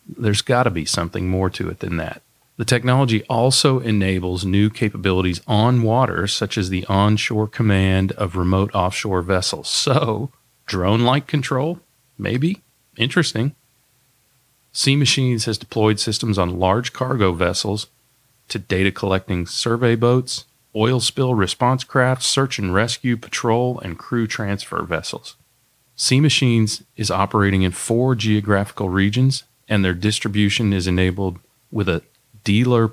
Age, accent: 40-59, American